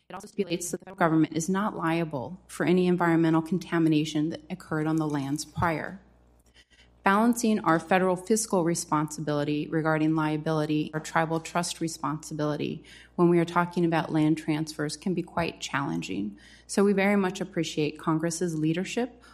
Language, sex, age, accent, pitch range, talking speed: English, female, 30-49, American, 155-180 Hz, 145 wpm